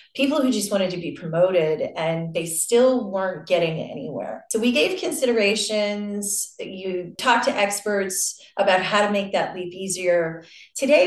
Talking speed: 155 wpm